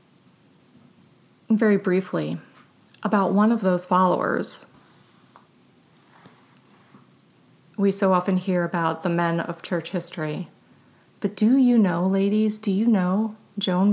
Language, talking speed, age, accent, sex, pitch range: English, 110 wpm, 30-49, American, female, 175-205 Hz